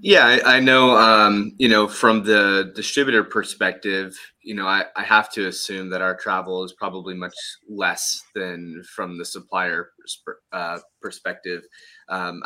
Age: 20-39